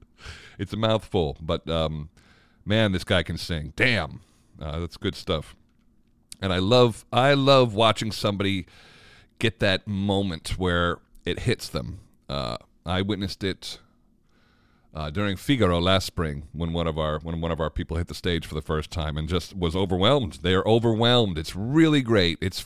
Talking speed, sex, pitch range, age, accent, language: 170 wpm, male, 80-110 Hz, 40-59, American, English